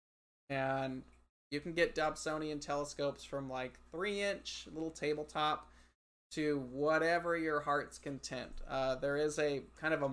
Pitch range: 135-155 Hz